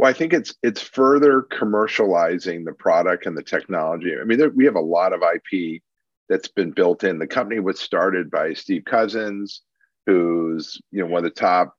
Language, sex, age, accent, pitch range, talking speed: English, male, 40-59, American, 90-115 Hz, 195 wpm